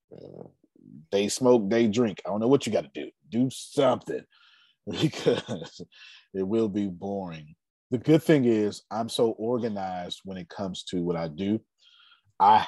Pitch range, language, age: 90-125 Hz, English, 30-49